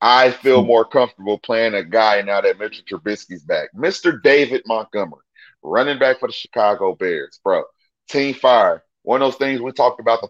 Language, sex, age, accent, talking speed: English, male, 30-49, American, 185 wpm